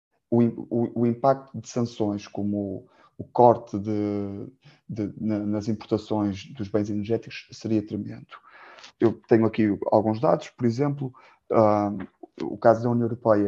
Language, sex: Portuguese, male